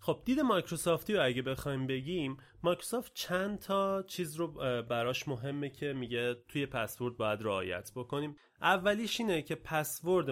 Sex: male